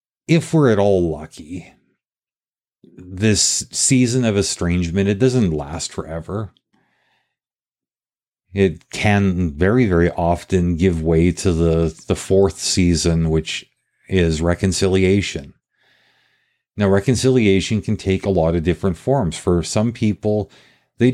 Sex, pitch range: male, 85-105 Hz